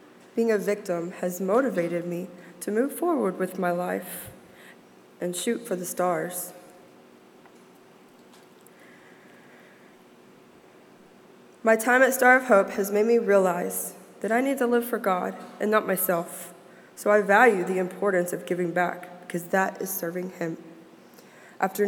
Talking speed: 140 wpm